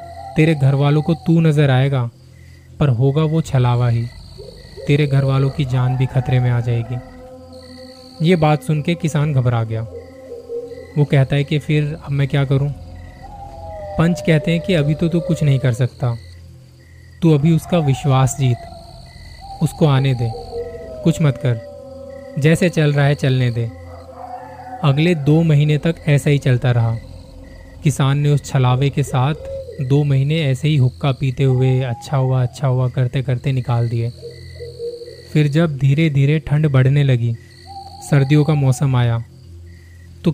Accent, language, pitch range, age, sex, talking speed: native, Hindi, 120-150 Hz, 20-39, male, 160 wpm